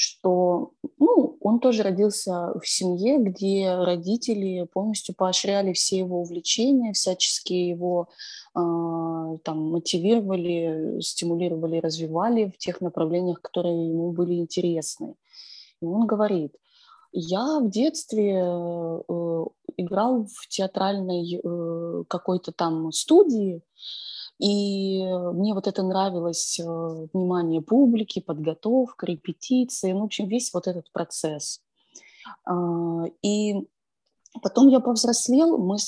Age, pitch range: 20-39, 170-205 Hz